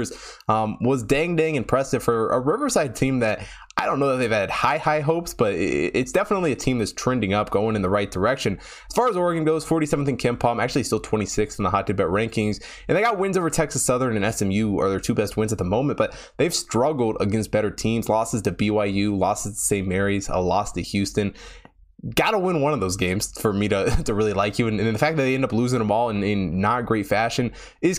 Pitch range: 100-130 Hz